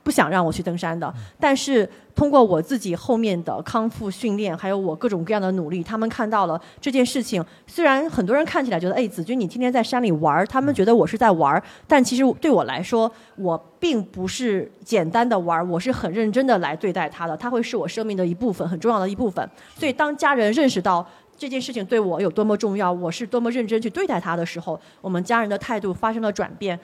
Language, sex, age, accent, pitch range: Chinese, female, 30-49, native, 185-240 Hz